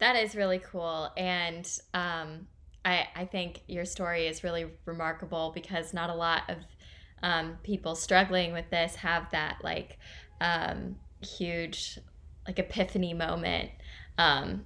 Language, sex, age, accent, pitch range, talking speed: English, female, 20-39, American, 160-185 Hz, 135 wpm